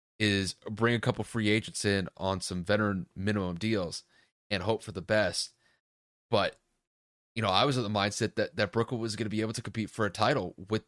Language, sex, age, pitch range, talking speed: English, male, 30-49, 95-110 Hz, 215 wpm